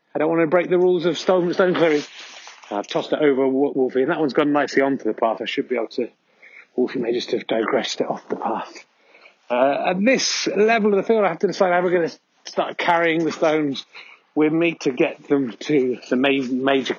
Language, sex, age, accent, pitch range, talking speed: English, male, 30-49, British, 135-175 Hz, 225 wpm